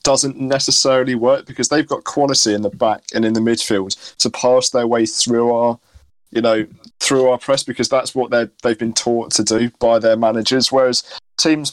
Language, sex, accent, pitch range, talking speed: English, male, British, 110-125 Hz, 220 wpm